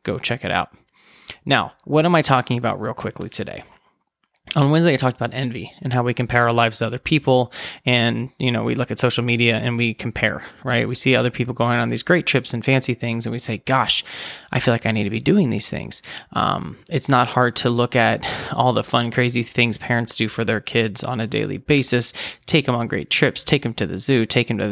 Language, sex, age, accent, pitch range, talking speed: English, male, 20-39, American, 110-130 Hz, 245 wpm